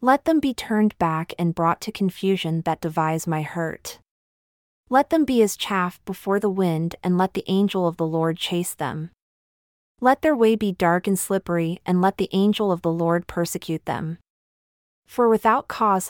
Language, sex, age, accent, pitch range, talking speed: English, female, 30-49, American, 170-215 Hz, 185 wpm